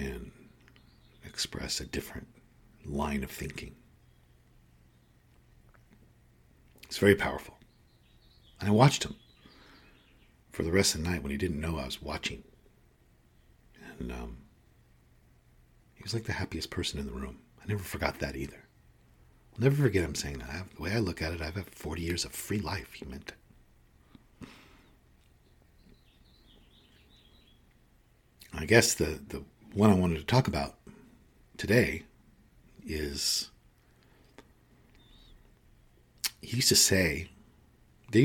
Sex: male